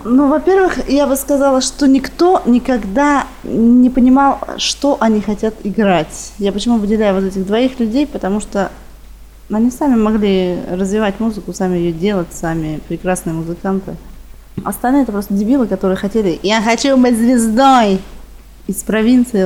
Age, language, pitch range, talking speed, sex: 20-39, Russian, 180-225 Hz, 140 wpm, female